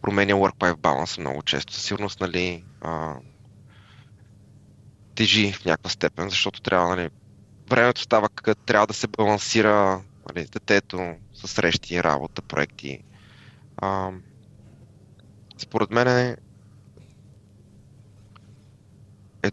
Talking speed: 105 wpm